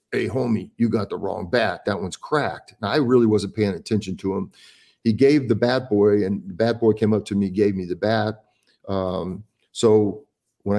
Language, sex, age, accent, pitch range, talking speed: English, male, 50-69, American, 100-120 Hz, 205 wpm